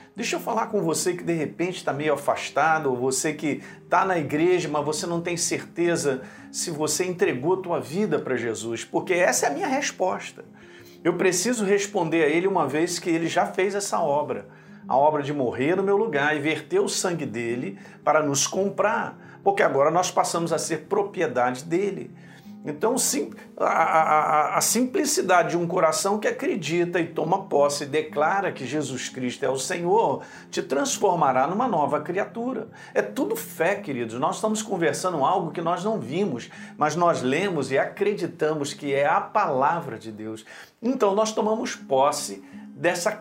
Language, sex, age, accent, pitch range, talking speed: Portuguese, male, 50-69, Brazilian, 150-200 Hz, 175 wpm